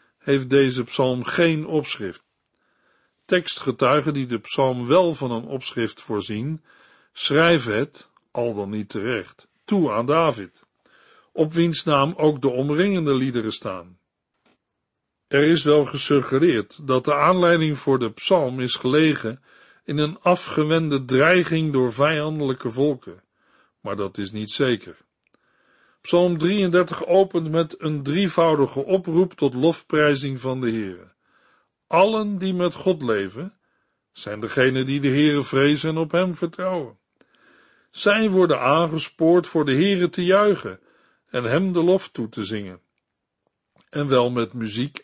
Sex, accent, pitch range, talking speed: male, Dutch, 130-170 Hz, 135 wpm